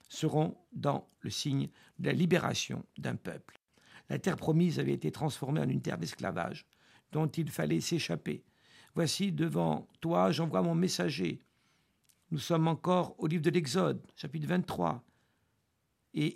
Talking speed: 145 wpm